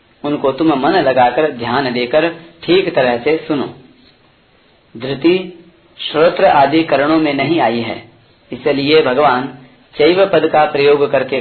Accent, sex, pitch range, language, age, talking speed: native, female, 135-175 Hz, Hindi, 40-59, 125 wpm